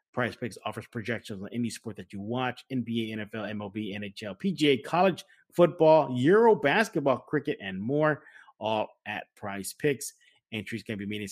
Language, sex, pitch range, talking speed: English, male, 110-145 Hz, 165 wpm